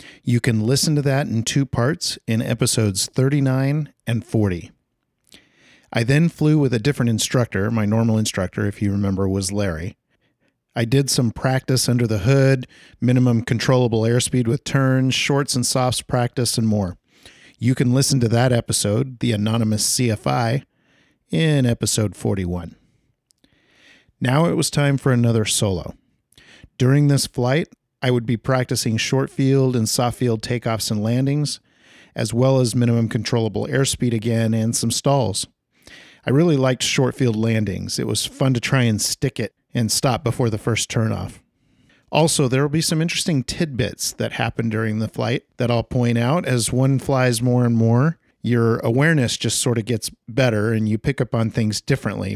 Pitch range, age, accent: 110-130 Hz, 40-59, American